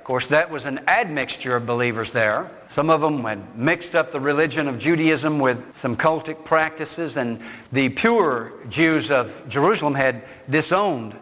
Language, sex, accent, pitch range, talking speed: English, male, American, 130-175 Hz, 165 wpm